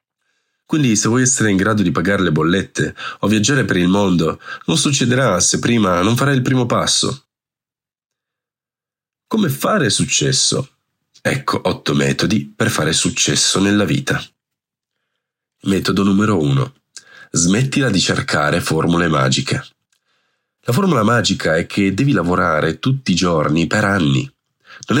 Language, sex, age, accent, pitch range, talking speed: Italian, male, 40-59, native, 90-135 Hz, 135 wpm